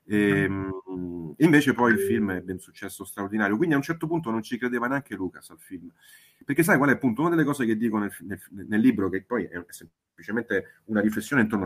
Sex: male